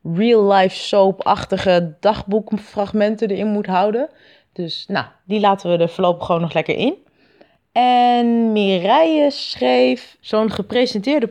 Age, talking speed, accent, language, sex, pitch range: 20-39, 110 wpm, Dutch, Dutch, female, 175-235 Hz